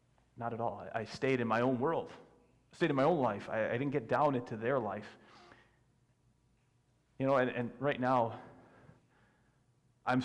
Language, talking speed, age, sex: English, 175 wpm, 40-59, male